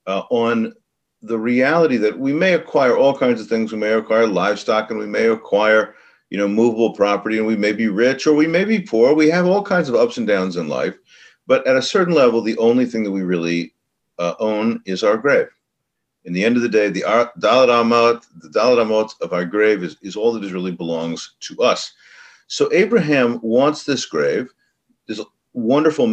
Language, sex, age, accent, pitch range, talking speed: English, male, 50-69, American, 100-160 Hz, 200 wpm